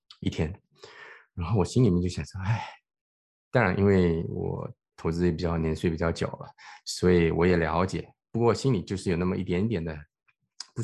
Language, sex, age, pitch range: Chinese, male, 20-39, 85-110 Hz